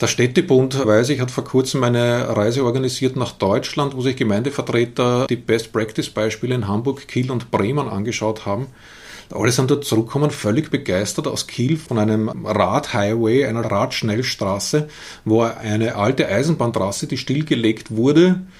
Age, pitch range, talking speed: 30-49, 120-155 Hz, 140 wpm